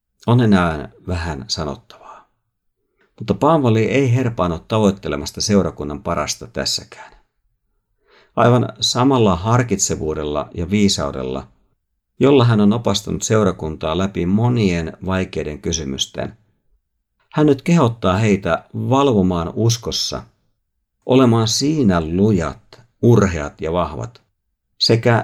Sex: male